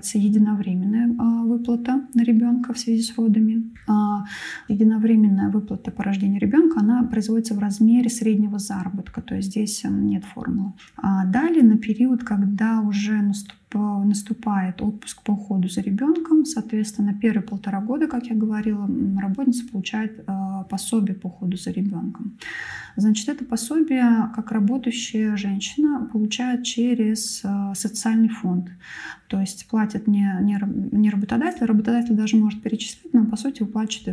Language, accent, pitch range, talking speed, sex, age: Russian, native, 200-230 Hz, 140 wpm, female, 20-39